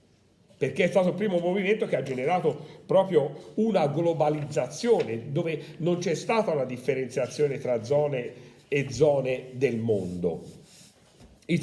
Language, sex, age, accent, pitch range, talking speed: Italian, male, 50-69, native, 130-180 Hz, 130 wpm